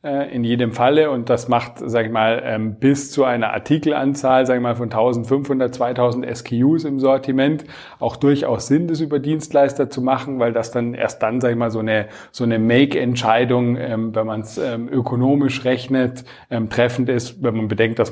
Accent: German